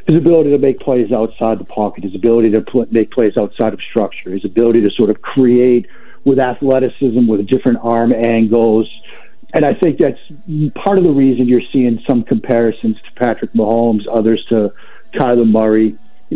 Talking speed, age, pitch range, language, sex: 180 wpm, 50-69, 110-130 Hz, English, male